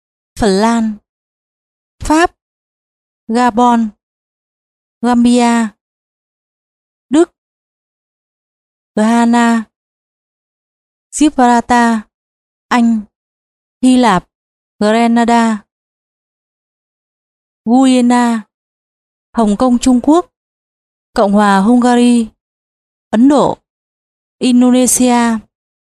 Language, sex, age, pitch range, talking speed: Vietnamese, female, 20-39, 225-250 Hz, 55 wpm